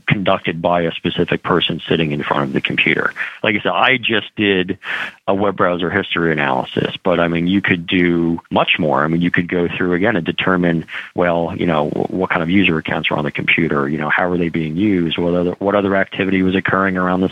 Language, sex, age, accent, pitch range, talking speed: English, male, 40-59, American, 85-95 Hz, 230 wpm